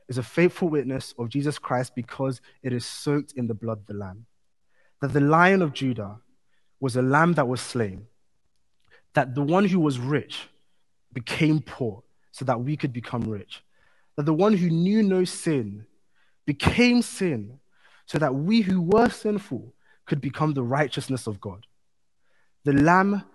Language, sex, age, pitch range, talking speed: English, male, 20-39, 120-155 Hz, 165 wpm